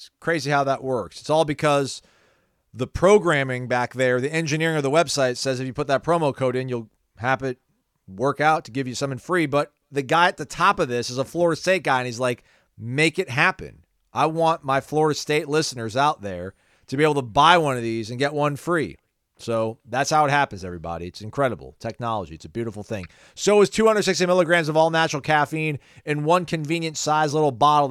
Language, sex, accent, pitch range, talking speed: English, male, American, 130-165 Hz, 215 wpm